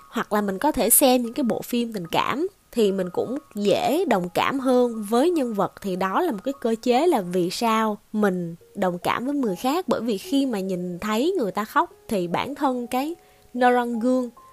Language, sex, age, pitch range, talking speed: Vietnamese, female, 20-39, 195-275 Hz, 220 wpm